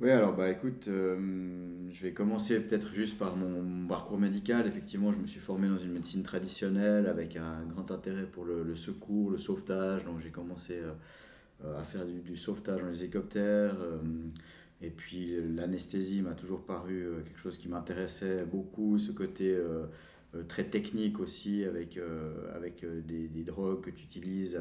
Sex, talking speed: male, 180 wpm